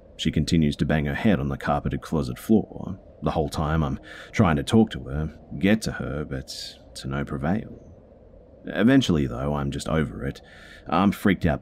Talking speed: 185 wpm